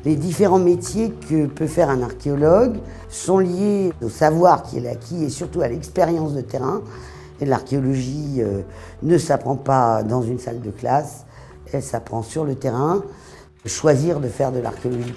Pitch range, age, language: 120-155 Hz, 50-69, French